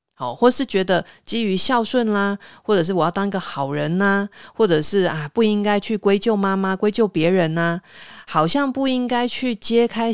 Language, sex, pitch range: Chinese, female, 170-230 Hz